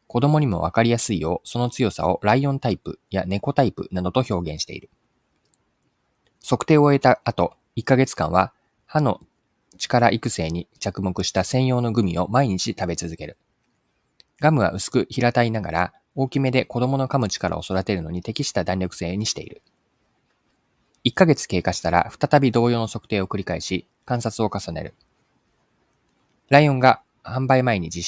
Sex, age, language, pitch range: male, 20-39, Japanese, 95-130 Hz